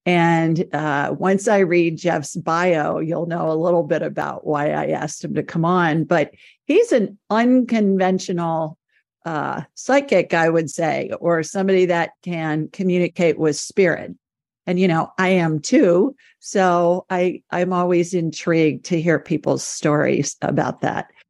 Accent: American